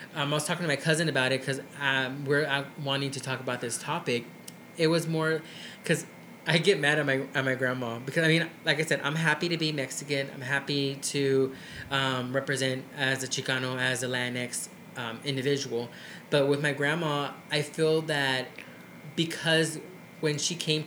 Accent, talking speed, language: American, 190 wpm, English